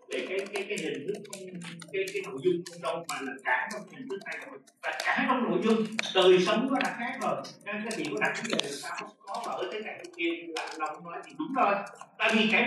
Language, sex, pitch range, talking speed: Vietnamese, male, 195-320 Hz, 245 wpm